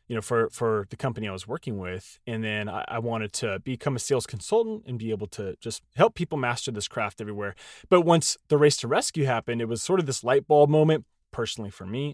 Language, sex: English, male